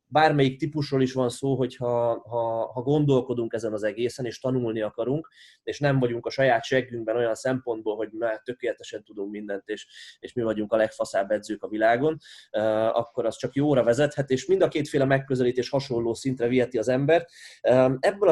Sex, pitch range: male, 120-145 Hz